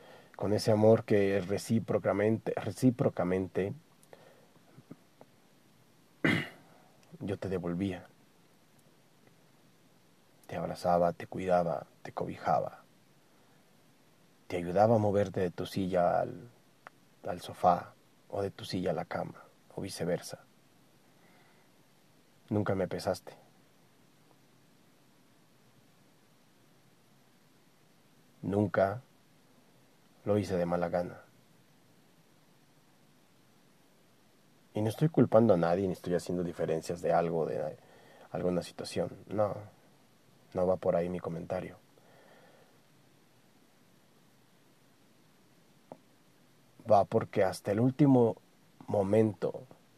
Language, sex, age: Spanish, male, 40-59